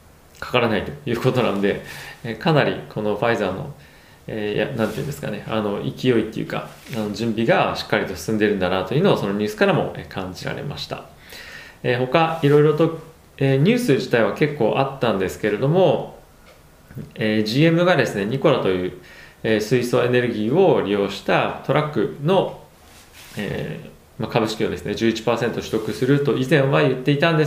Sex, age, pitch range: male, 20-39, 105-145 Hz